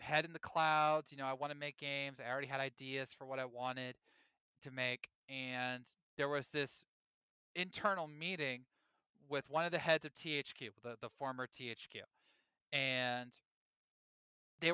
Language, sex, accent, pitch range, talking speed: English, male, American, 135-195 Hz, 165 wpm